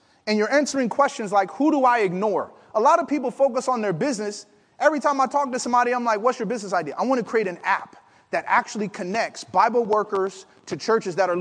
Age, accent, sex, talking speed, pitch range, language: 30-49, American, male, 230 wpm, 190-265 Hz, English